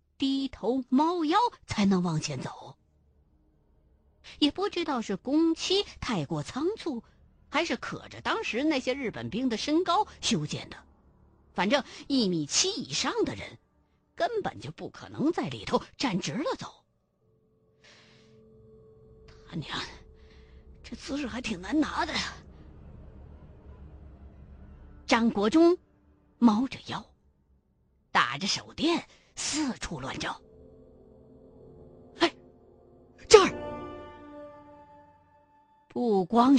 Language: Chinese